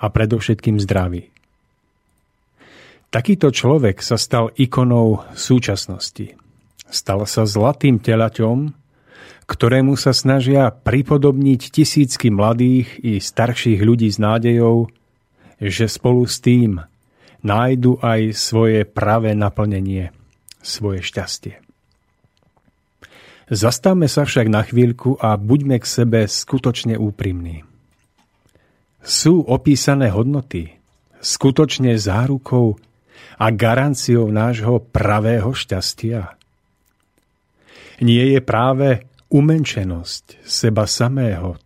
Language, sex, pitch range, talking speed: Slovak, male, 105-130 Hz, 90 wpm